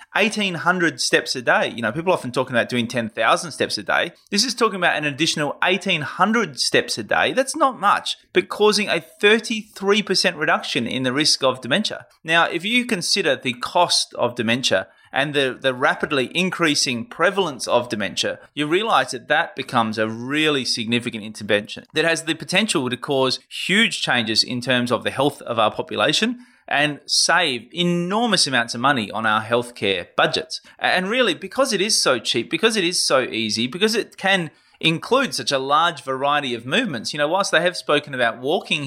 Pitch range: 125-180 Hz